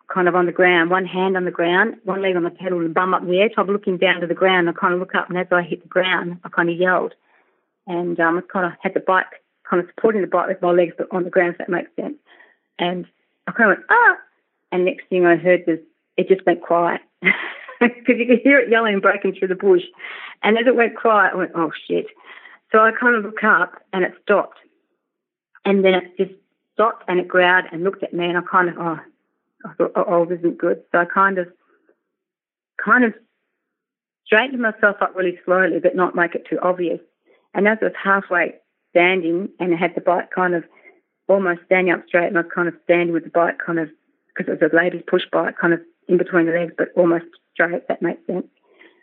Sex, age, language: female, 40-59, English